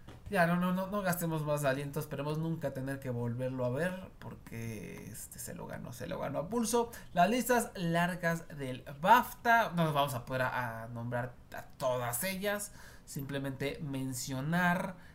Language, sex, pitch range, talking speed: Spanish, male, 130-170 Hz, 170 wpm